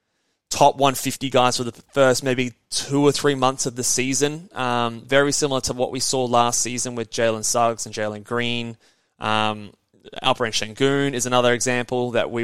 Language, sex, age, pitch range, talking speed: English, male, 20-39, 120-140 Hz, 185 wpm